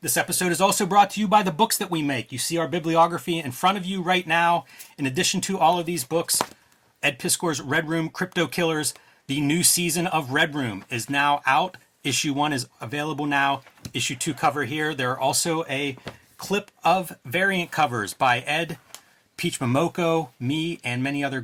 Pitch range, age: 135-170 Hz, 30-49